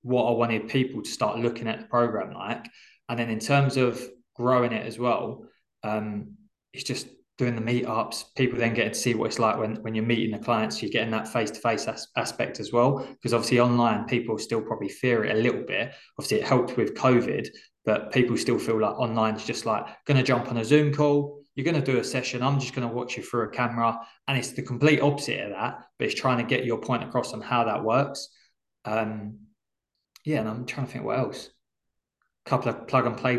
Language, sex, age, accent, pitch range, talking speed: English, male, 20-39, British, 115-125 Hz, 235 wpm